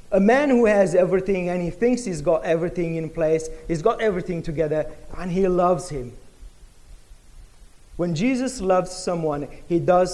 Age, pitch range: 40-59, 165-220 Hz